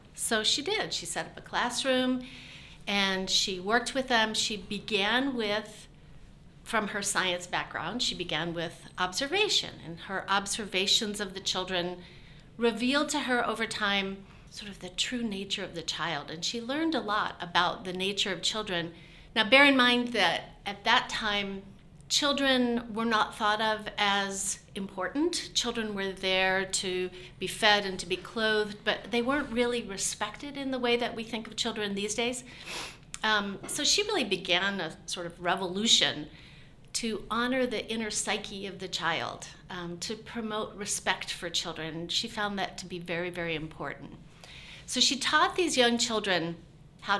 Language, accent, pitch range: English, American, 175-230 Hz